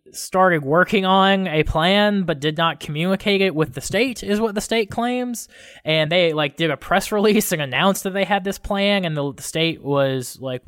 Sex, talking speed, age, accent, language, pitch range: male, 215 wpm, 20-39, American, English, 140-185 Hz